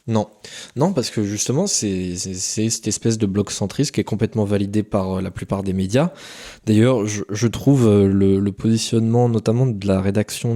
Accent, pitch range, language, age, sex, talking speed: French, 100-120 Hz, French, 20-39, male, 190 wpm